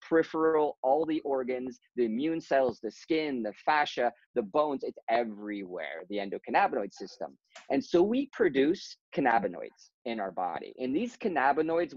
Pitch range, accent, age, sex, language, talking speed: 130-205 Hz, American, 40-59, male, English, 145 wpm